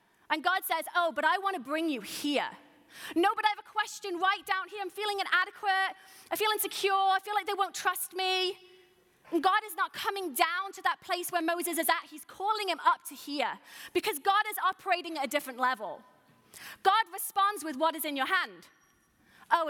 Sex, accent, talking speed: female, British, 205 wpm